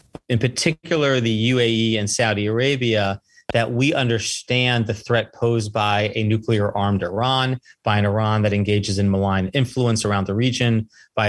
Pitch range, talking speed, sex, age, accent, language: 105-130 Hz, 160 wpm, male, 30-49, American, English